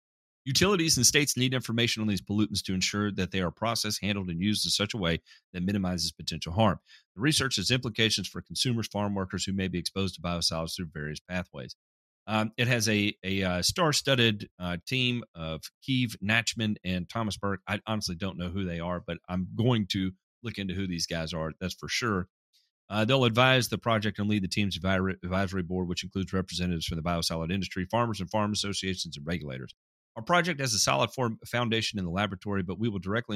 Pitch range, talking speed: 90-110 Hz, 205 wpm